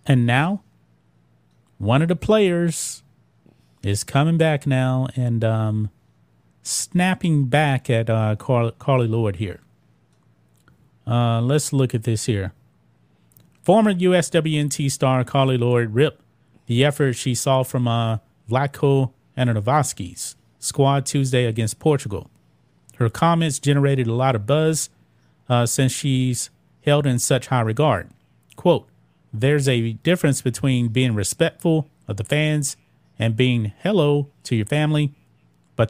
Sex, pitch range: male, 115-150 Hz